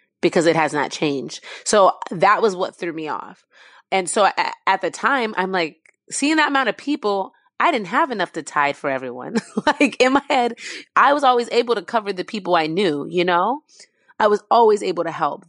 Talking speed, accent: 215 wpm, American